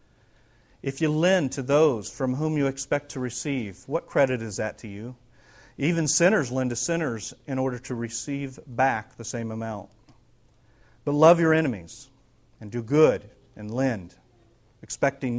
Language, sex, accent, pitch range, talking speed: English, male, American, 115-150 Hz, 155 wpm